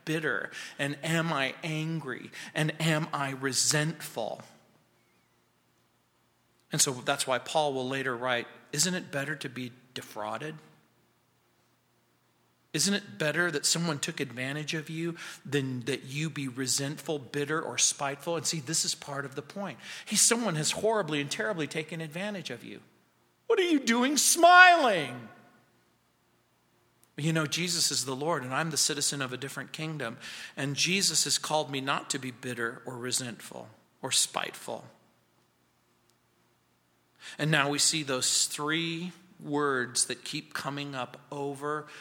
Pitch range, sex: 125-160 Hz, male